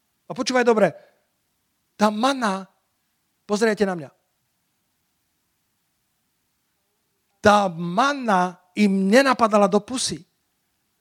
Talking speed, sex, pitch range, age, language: 75 wpm, male, 175-245 Hz, 40-59, Slovak